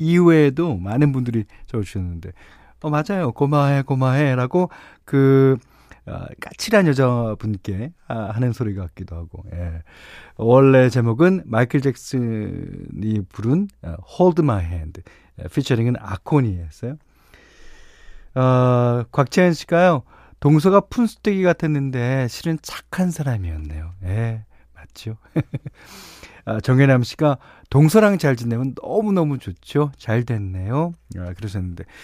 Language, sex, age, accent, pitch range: Korean, male, 40-59, native, 105-160 Hz